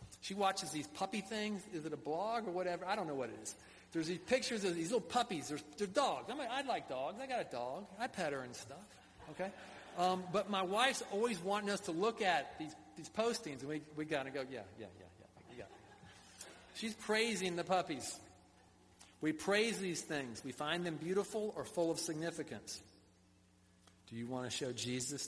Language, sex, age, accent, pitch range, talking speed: English, male, 50-69, American, 100-160 Hz, 205 wpm